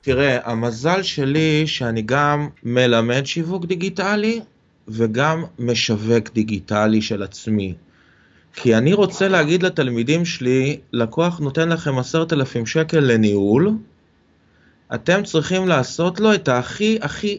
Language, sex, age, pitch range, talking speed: Hebrew, male, 30-49, 120-170 Hz, 115 wpm